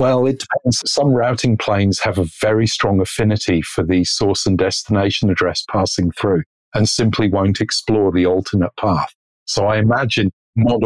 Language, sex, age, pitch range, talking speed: English, male, 40-59, 95-110 Hz, 165 wpm